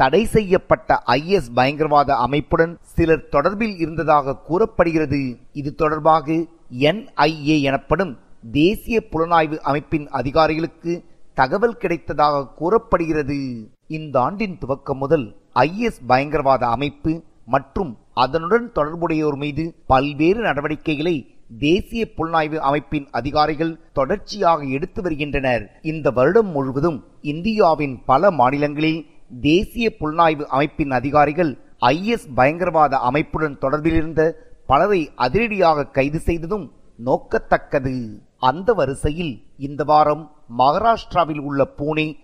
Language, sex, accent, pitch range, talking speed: Tamil, male, native, 140-170 Hz, 90 wpm